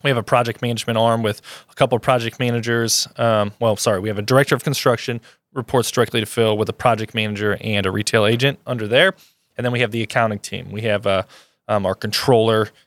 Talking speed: 225 wpm